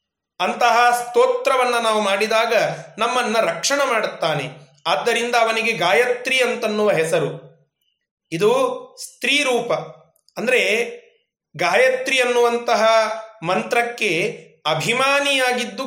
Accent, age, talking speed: native, 30-49, 70 wpm